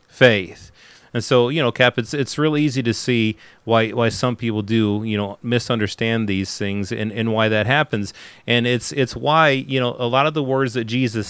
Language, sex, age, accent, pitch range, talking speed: English, male, 30-49, American, 110-130 Hz, 210 wpm